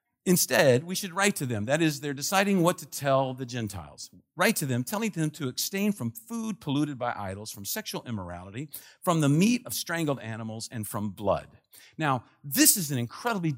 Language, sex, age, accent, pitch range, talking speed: English, male, 50-69, American, 115-170 Hz, 195 wpm